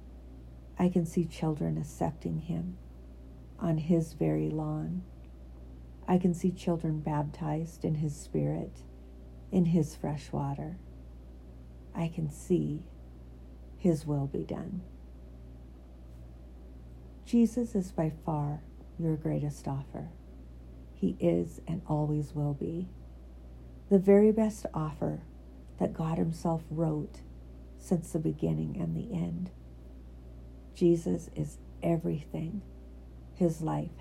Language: English